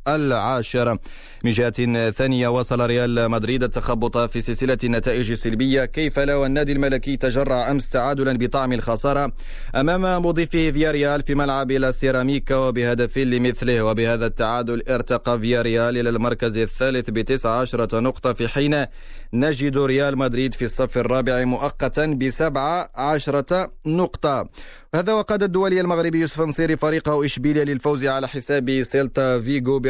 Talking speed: 125 wpm